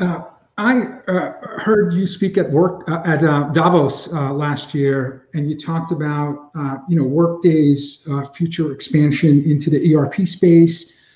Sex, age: male, 50-69